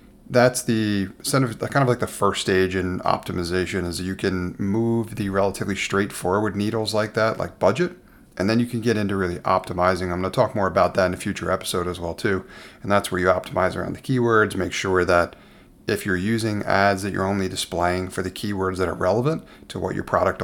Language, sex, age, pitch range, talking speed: English, male, 30-49, 95-115 Hz, 215 wpm